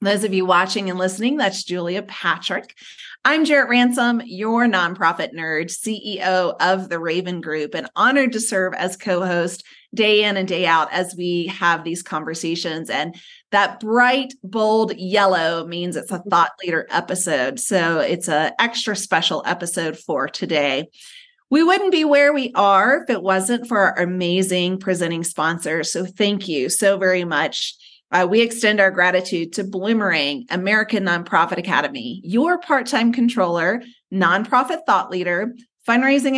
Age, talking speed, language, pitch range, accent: 30-49, 155 wpm, English, 175-245 Hz, American